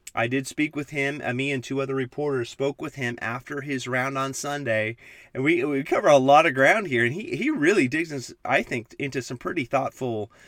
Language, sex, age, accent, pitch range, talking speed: English, male, 30-49, American, 125-150 Hz, 220 wpm